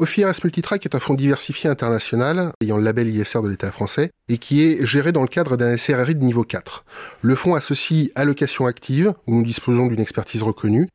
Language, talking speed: French, 205 wpm